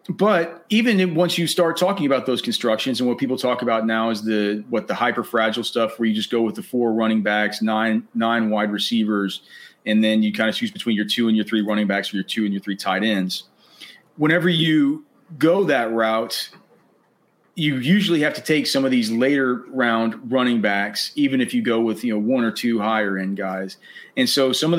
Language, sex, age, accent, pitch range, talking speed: English, male, 30-49, American, 110-135 Hz, 220 wpm